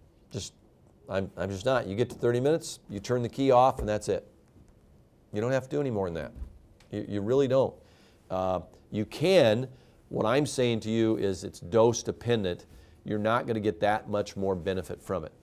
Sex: male